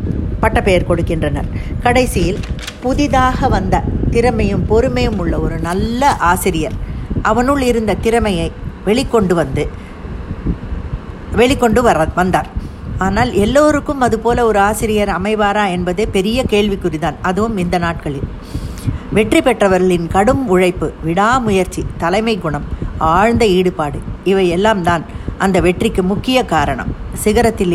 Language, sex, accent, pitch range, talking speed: Tamil, female, native, 180-225 Hz, 100 wpm